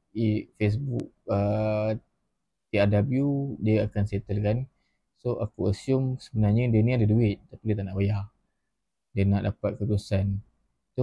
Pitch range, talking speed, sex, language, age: 105-120 Hz, 135 wpm, male, Malay, 20-39